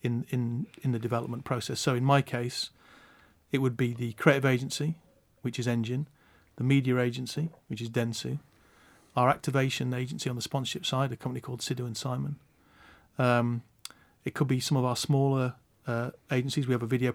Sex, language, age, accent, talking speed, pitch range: male, English, 40-59, British, 180 wpm, 120-135 Hz